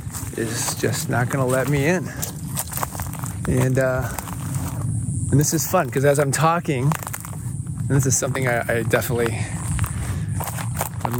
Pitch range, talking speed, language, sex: 115-135 Hz, 140 wpm, English, male